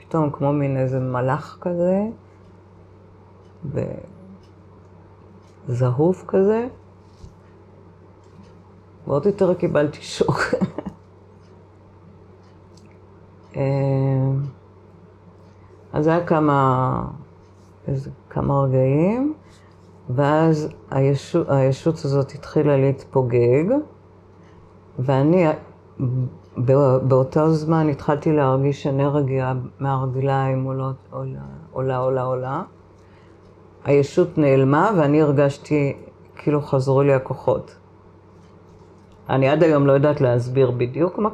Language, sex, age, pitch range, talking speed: Hebrew, female, 50-69, 95-145 Hz, 75 wpm